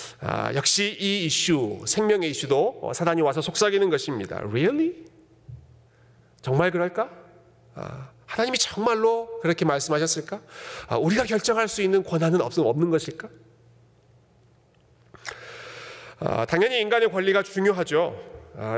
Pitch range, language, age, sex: 150-215 Hz, Korean, 40-59, male